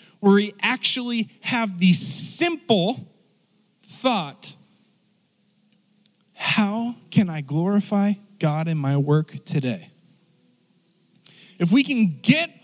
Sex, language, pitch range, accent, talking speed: male, English, 195-260 Hz, American, 95 wpm